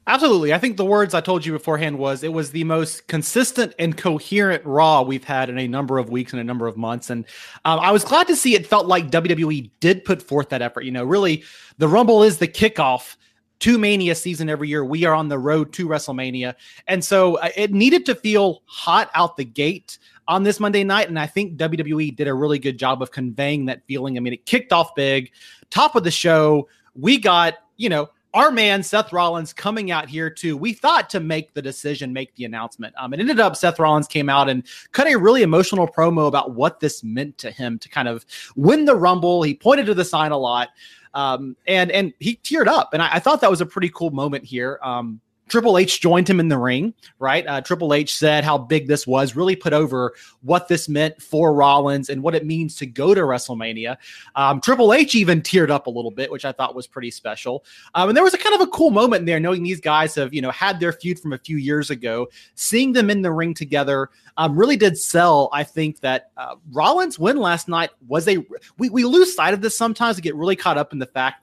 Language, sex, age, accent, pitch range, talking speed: English, male, 30-49, American, 135-190 Hz, 240 wpm